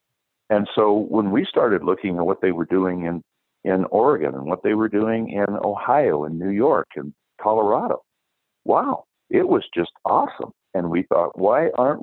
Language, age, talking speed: English, 60-79, 180 wpm